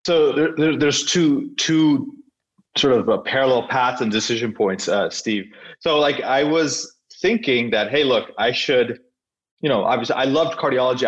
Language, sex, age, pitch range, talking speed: English, male, 30-49, 115-160 Hz, 175 wpm